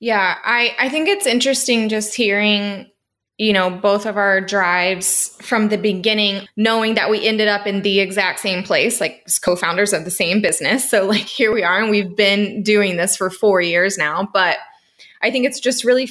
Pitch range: 180-220 Hz